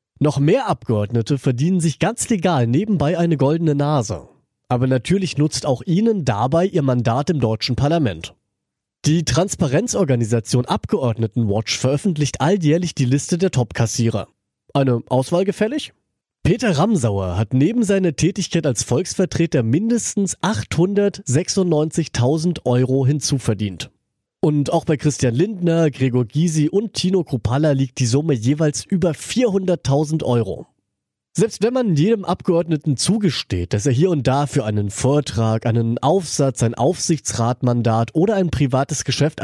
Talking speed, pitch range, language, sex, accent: 130 wpm, 120-175 Hz, German, male, German